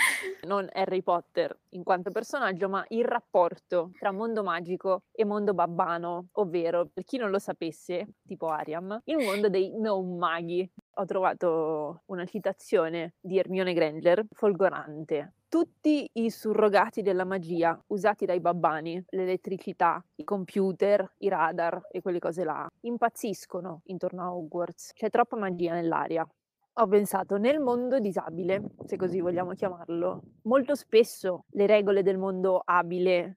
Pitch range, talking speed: 175-210 Hz, 140 wpm